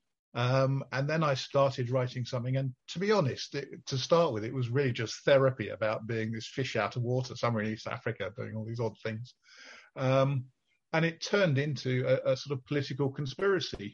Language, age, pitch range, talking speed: English, 50-69, 110-135 Hz, 200 wpm